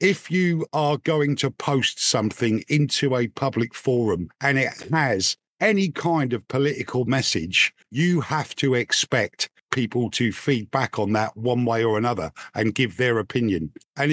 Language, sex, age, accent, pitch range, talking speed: English, male, 50-69, British, 115-145 Hz, 160 wpm